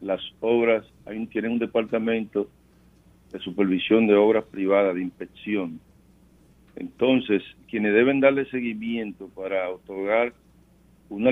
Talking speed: 105 wpm